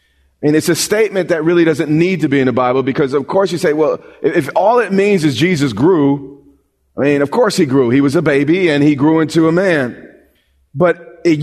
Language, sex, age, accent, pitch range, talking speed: English, male, 40-59, American, 155-195 Hz, 230 wpm